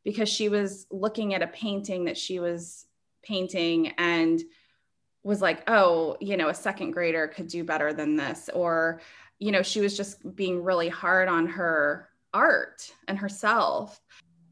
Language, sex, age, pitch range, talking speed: English, female, 20-39, 170-215 Hz, 160 wpm